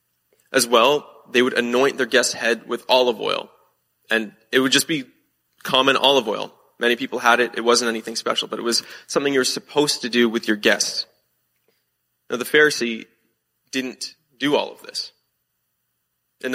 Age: 20-39